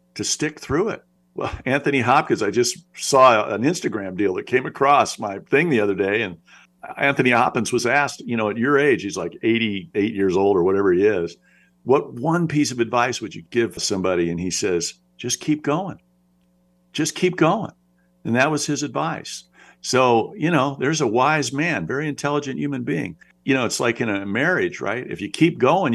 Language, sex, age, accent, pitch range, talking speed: English, male, 50-69, American, 100-140 Hz, 200 wpm